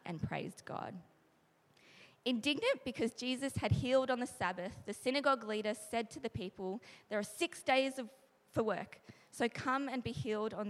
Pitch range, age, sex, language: 190-235 Hz, 20-39, female, English